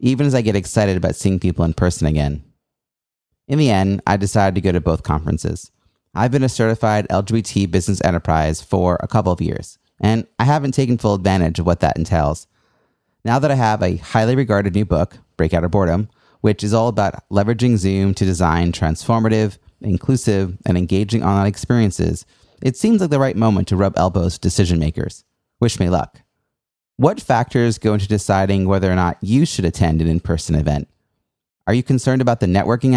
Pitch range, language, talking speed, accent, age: 90-120 Hz, English, 190 wpm, American, 30-49